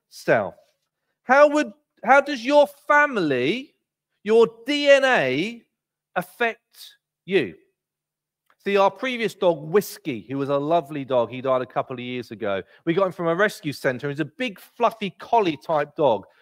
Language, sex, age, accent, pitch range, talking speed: English, male, 40-59, British, 160-260 Hz, 155 wpm